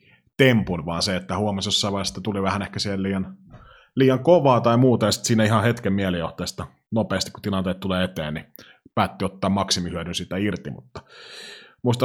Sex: male